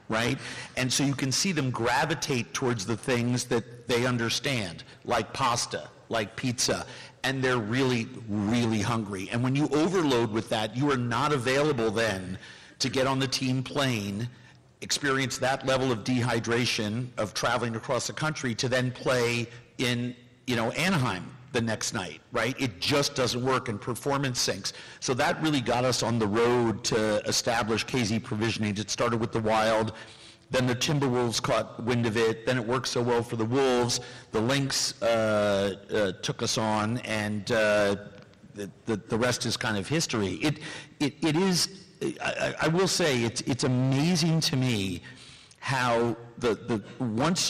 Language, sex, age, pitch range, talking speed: English, male, 50-69, 115-135 Hz, 170 wpm